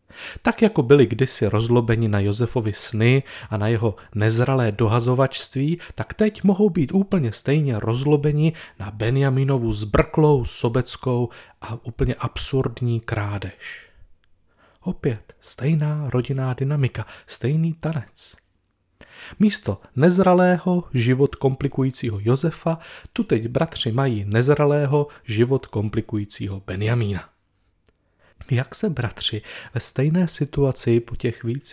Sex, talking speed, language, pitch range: male, 105 wpm, Czech, 110-150 Hz